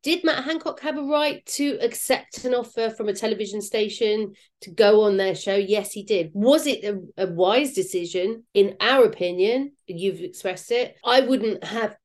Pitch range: 195-270 Hz